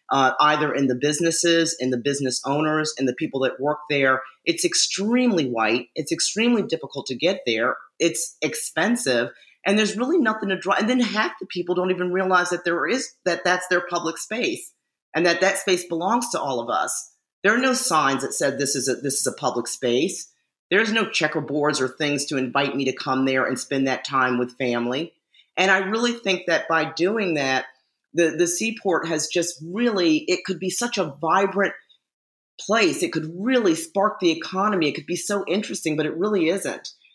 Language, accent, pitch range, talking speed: English, American, 150-195 Hz, 200 wpm